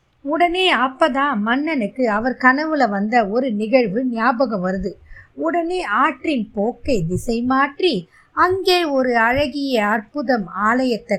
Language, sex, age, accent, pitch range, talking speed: Tamil, female, 20-39, native, 210-290 Hz, 105 wpm